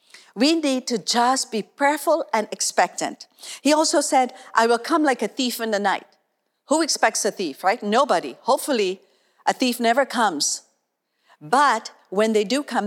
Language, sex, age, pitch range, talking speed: English, female, 50-69, 210-265 Hz, 170 wpm